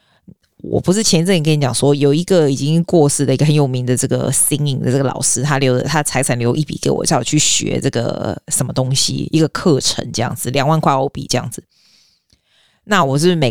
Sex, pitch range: female, 135-185 Hz